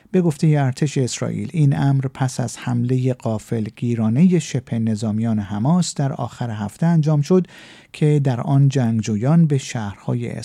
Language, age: Persian, 50-69